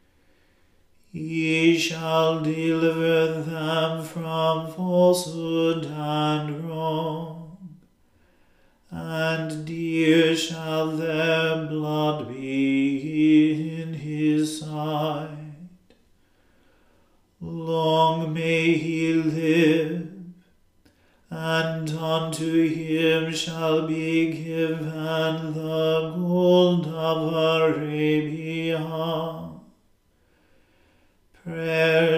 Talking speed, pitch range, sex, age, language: 60 wpm, 155-165 Hz, male, 40-59, English